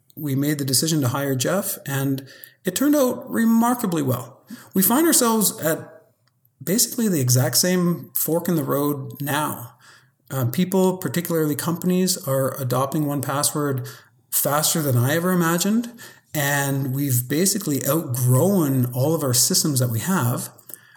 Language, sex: English, male